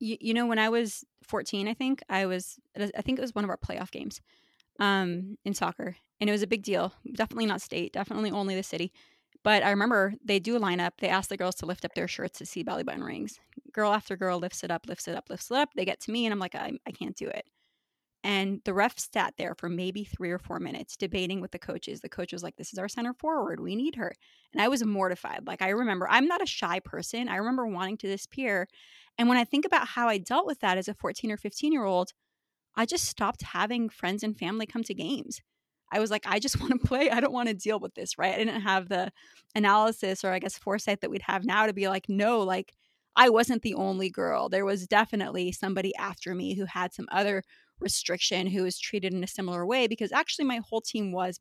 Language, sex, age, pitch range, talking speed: English, female, 20-39, 190-235 Hz, 245 wpm